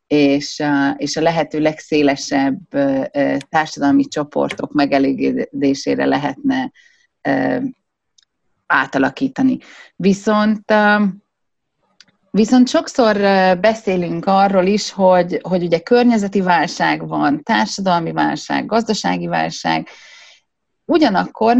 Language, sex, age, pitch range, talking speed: Hungarian, female, 30-49, 165-245 Hz, 70 wpm